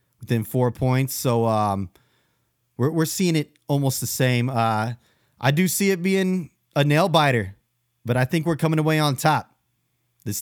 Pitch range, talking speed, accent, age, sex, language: 120-150 Hz, 165 wpm, American, 30-49, male, English